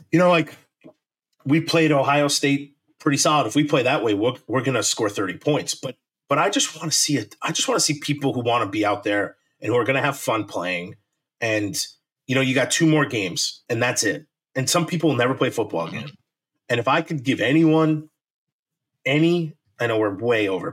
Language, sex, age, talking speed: English, male, 30-49, 230 wpm